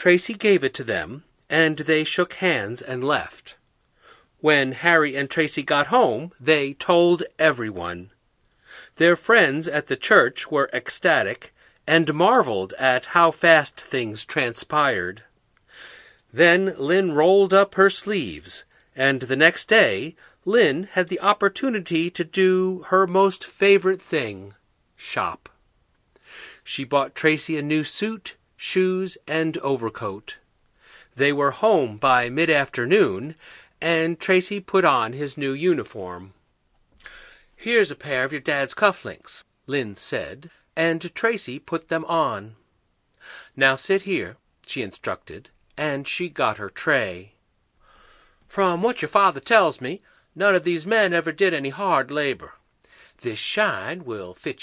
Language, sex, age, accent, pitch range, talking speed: English, male, 40-59, American, 135-185 Hz, 130 wpm